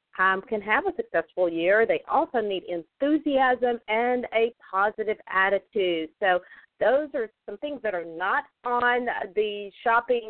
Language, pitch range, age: English, 170-225 Hz, 40-59